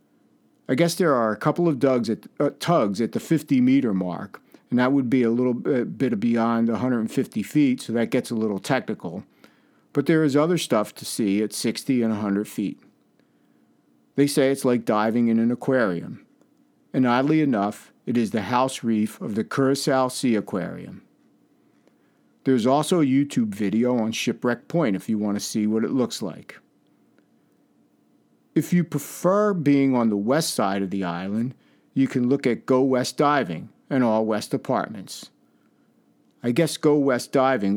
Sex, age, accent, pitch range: male, 50-69, American, 115-155 Hz